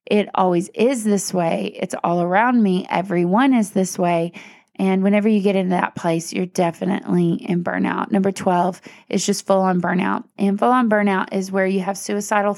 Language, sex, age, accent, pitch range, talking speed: English, female, 20-39, American, 185-210 Hz, 180 wpm